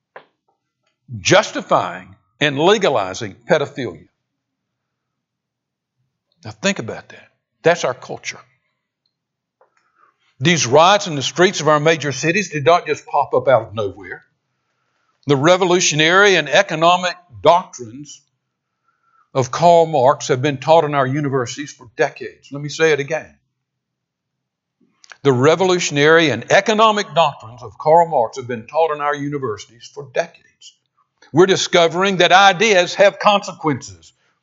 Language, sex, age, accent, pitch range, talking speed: English, male, 60-79, American, 145-200 Hz, 125 wpm